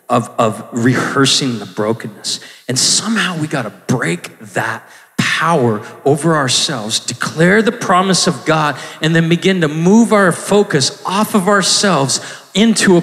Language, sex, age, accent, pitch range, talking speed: English, male, 40-59, American, 160-220 Hz, 145 wpm